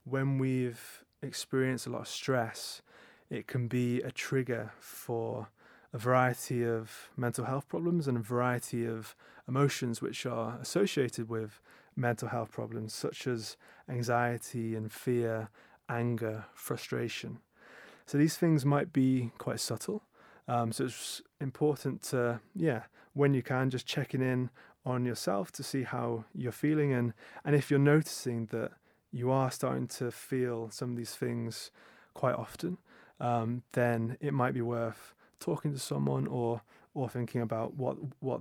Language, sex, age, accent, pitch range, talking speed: English, male, 30-49, British, 115-135 Hz, 150 wpm